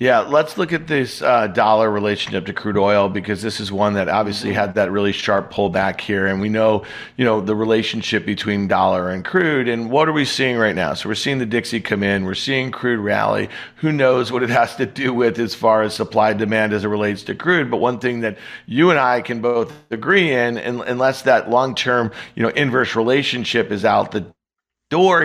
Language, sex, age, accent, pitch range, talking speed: English, male, 50-69, American, 110-130 Hz, 225 wpm